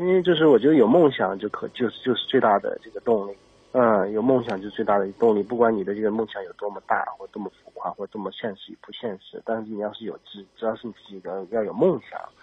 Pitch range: 115-155 Hz